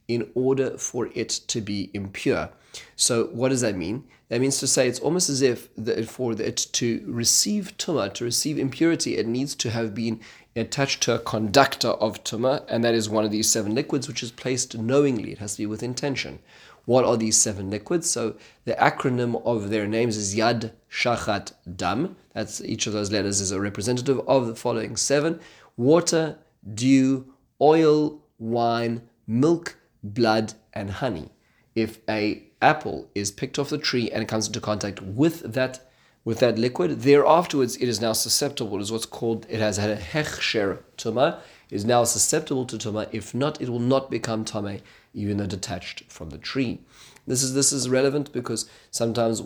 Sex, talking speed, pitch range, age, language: male, 185 wpm, 110-135 Hz, 30-49, English